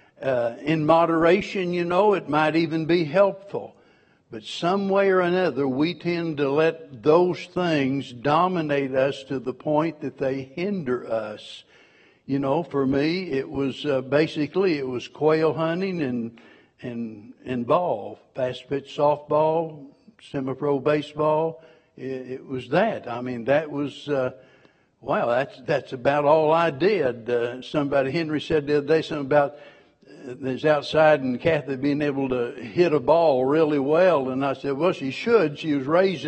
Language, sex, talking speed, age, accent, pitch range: English, male, 160 wpm, 60-79, American, 135-160 Hz